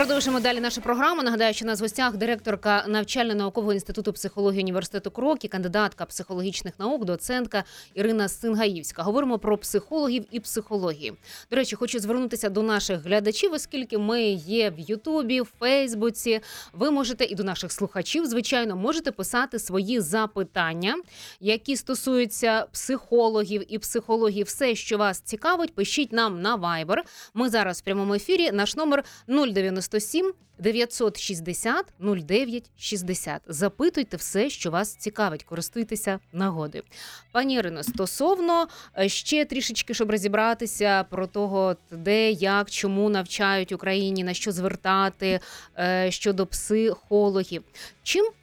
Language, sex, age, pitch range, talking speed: Ukrainian, female, 20-39, 195-240 Hz, 125 wpm